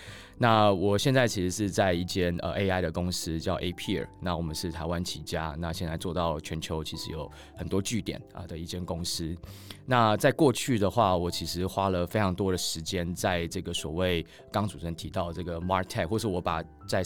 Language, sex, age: Chinese, male, 20-39